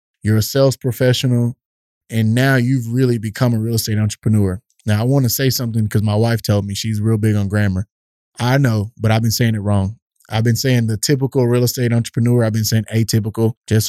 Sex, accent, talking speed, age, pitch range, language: male, American, 215 wpm, 20-39, 110-135 Hz, English